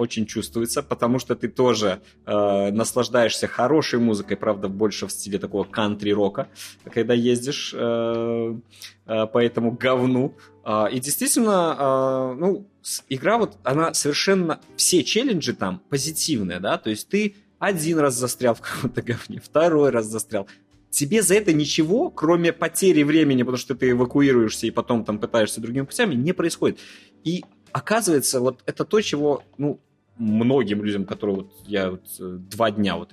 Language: Russian